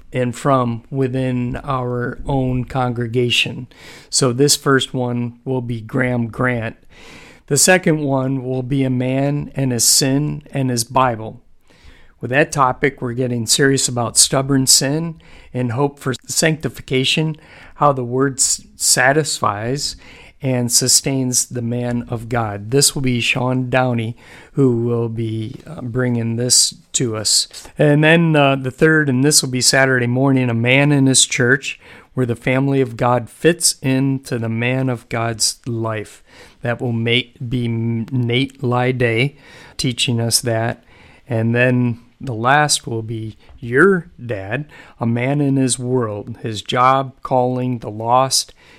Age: 40-59